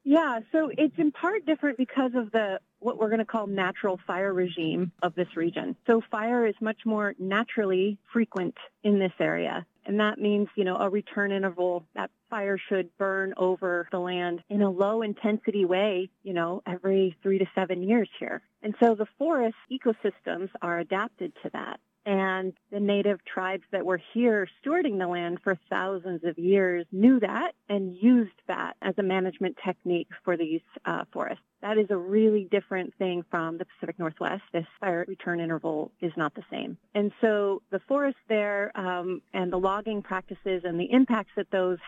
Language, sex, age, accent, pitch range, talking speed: English, female, 40-59, American, 185-220 Hz, 180 wpm